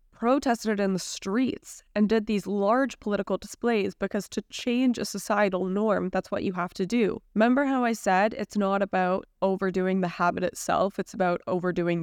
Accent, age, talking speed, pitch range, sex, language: American, 10-29, 180 wpm, 180-215 Hz, female, English